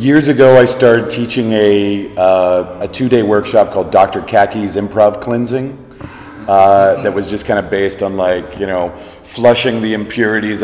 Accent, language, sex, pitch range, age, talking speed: American, Polish, male, 95-110 Hz, 40-59, 165 wpm